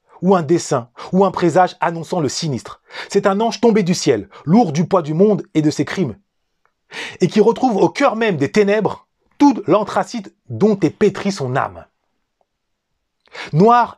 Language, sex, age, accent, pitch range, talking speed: French, male, 30-49, French, 155-220 Hz, 170 wpm